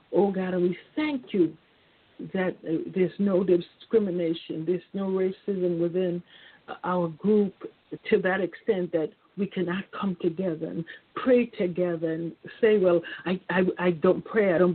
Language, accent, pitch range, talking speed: English, American, 175-205 Hz, 145 wpm